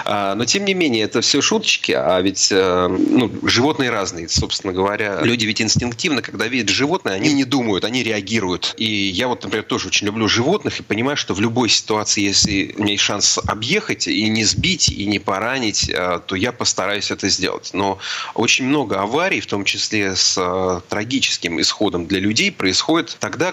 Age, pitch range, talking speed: 30-49, 100-120 Hz, 180 wpm